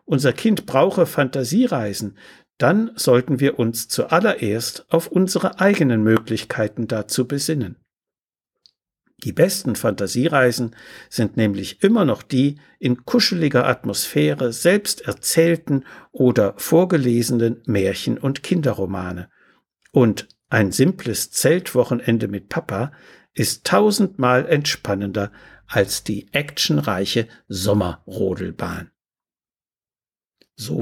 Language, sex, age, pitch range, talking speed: German, male, 60-79, 110-165 Hz, 90 wpm